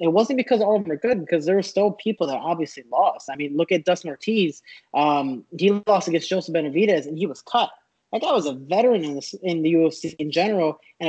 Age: 20-39